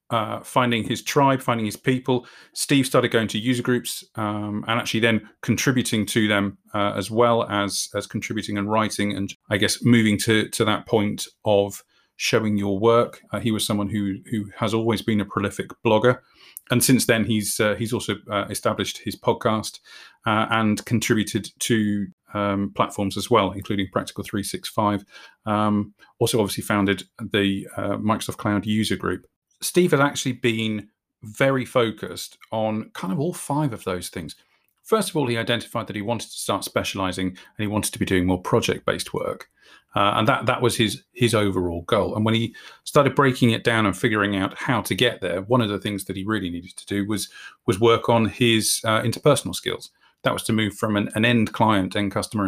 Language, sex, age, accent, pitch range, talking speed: English, male, 30-49, British, 100-120 Hz, 195 wpm